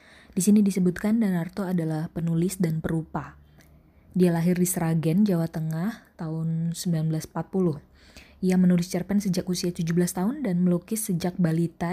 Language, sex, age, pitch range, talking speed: Indonesian, female, 20-39, 160-180 Hz, 135 wpm